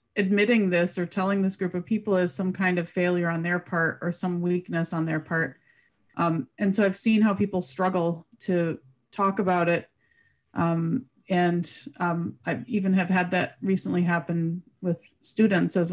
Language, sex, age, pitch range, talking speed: English, female, 30-49, 170-195 Hz, 175 wpm